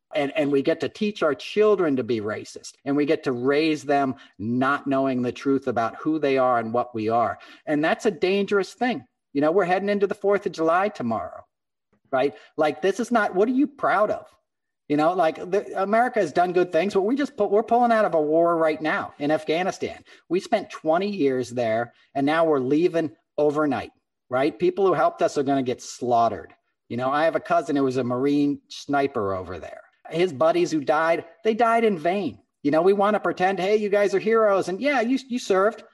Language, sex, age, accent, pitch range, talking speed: English, male, 40-59, American, 145-215 Hz, 220 wpm